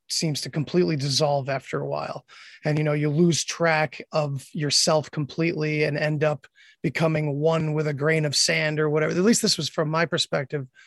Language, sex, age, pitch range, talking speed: English, male, 20-39, 145-180 Hz, 195 wpm